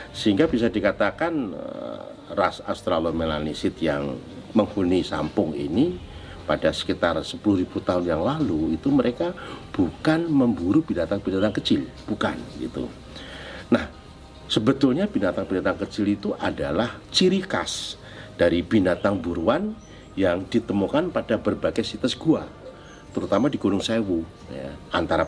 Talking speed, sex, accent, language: 110 wpm, male, native, Indonesian